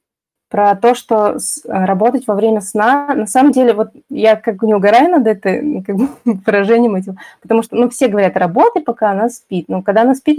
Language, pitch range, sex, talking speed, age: Russian, 180-230 Hz, female, 190 wpm, 20-39